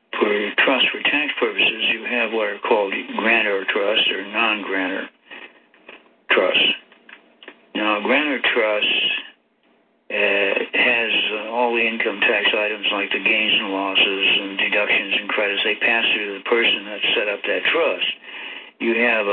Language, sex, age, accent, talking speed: English, male, 60-79, American, 155 wpm